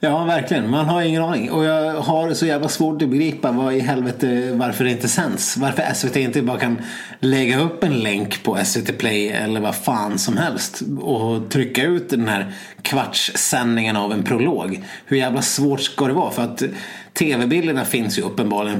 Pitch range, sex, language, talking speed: 115-145 Hz, male, Swedish, 190 wpm